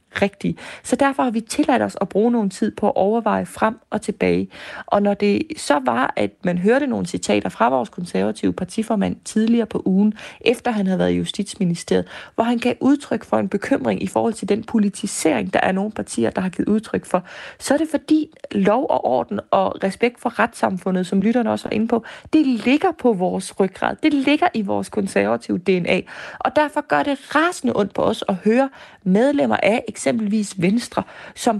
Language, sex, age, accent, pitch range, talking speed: Danish, female, 30-49, native, 195-275 Hz, 200 wpm